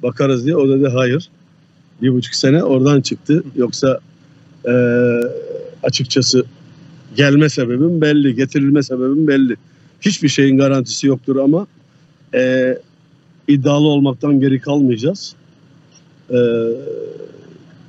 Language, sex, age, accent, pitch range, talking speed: Greek, male, 50-69, Turkish, 135-160 Hz, 100 wpm